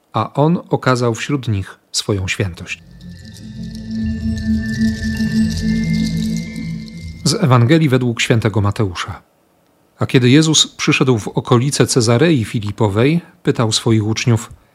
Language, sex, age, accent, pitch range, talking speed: Polish, male, 40-59, native, 110-140 Hz, 95 wpm